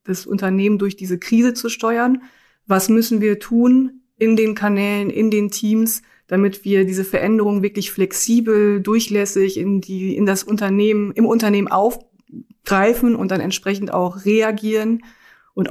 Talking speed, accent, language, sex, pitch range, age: 145 wpm, German, German, female, 185-220 Hz, 30-49